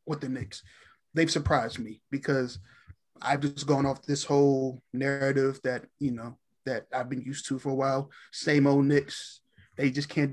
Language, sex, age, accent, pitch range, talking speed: English, male, 20-39, American, 135-145 Hz, 180 wpm